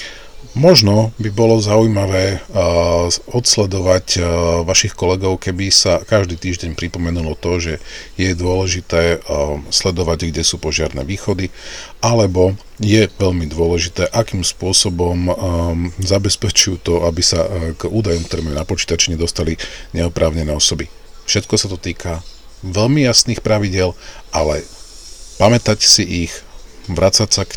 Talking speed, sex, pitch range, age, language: 130 wpm, male, 85-100 Hz, 40-59, Slovak